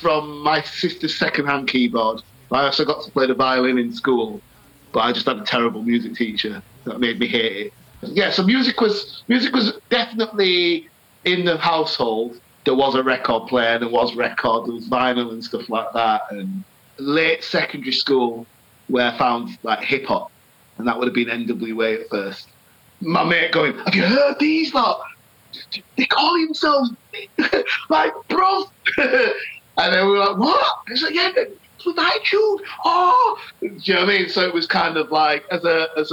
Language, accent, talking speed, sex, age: English, British, 190 wpm, male, 30-49